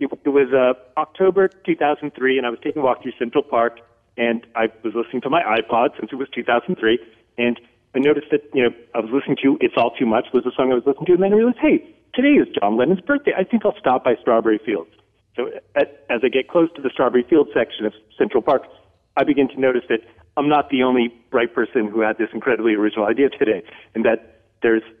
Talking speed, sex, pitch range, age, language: 235 wpm, male, 115-155 Hz, 40-59, English